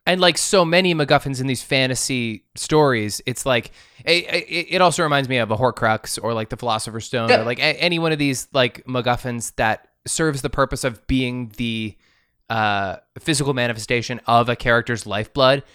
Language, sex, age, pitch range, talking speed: English, male, 20-39, 115-150 Hz, 175 wpm